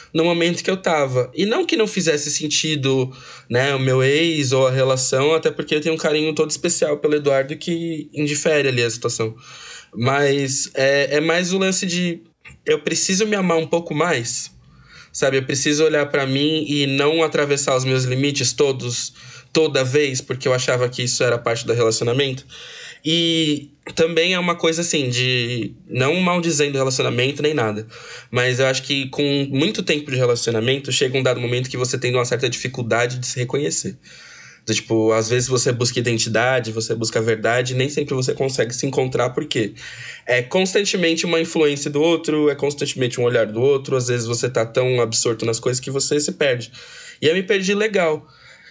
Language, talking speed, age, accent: Portuguese, 190 wpm, 20-39, Brazilian